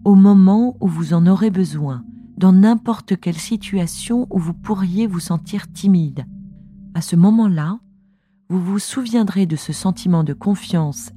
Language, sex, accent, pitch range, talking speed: French, female, French, 160-225 Hz, 150 wpm